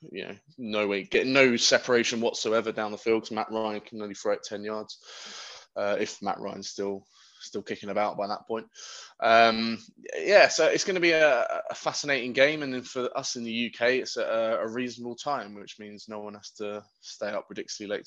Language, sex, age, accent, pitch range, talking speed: English, male, 20-39, British, 100-120 Hz, 215 wpm